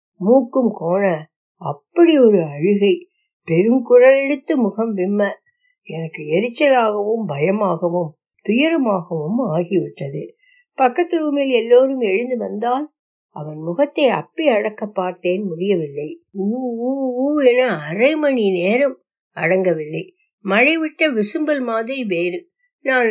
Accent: native